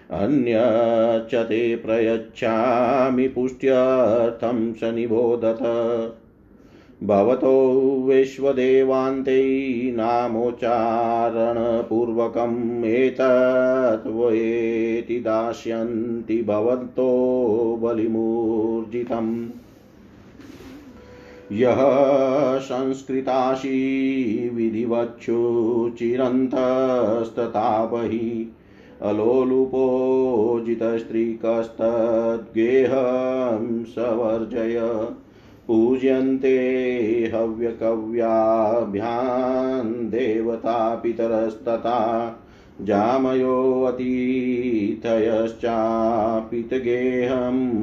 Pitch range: 115-130 Hz